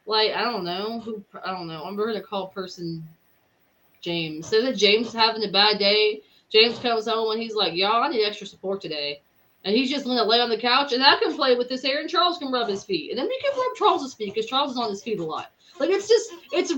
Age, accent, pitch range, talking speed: 20-39, American, 190-240 Hz, 260 wpm